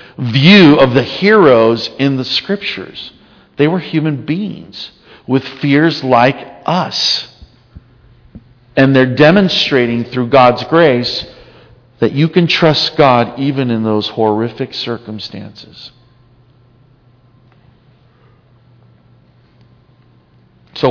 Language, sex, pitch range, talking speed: English, male, 120-150 Hz, 90 wpm